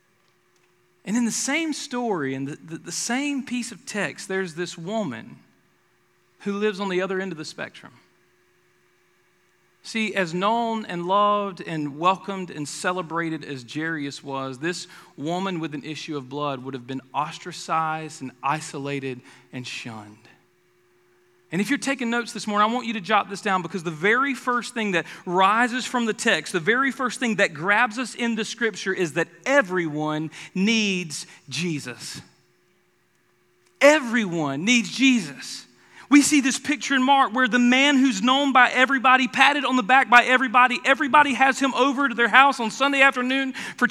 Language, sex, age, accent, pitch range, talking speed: English, male, 40-59, American, 165-255 Hz, 170 wpm